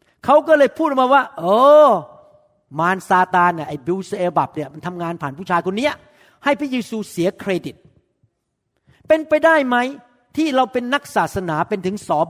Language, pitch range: Thai, 150-205 Hz